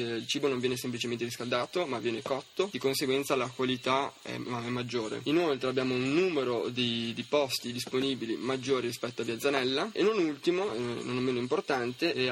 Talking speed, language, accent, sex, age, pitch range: 185 wpm, Italian, native, male, 20-39, 120-140 Hz